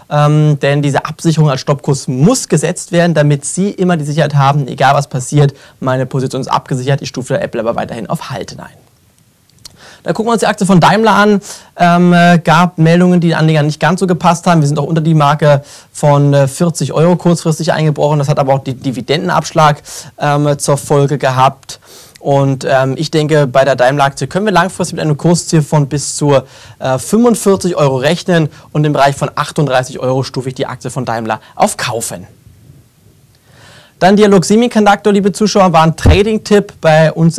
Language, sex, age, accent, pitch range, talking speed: German, male, 20-39, German, 135-165 Hz, 185 wpm